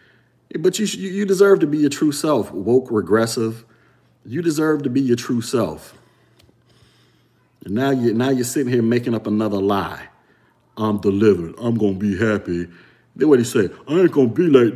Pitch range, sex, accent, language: 115-175 Hz, male, American, English